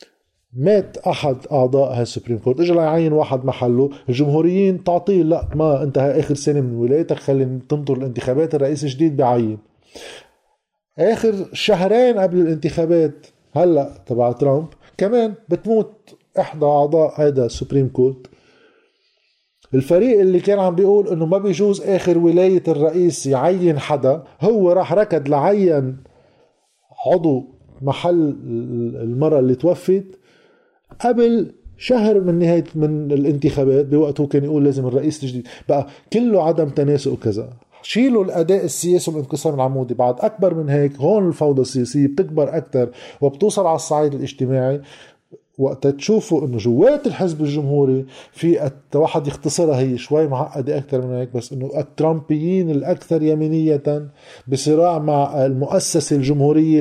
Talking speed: 125 wpm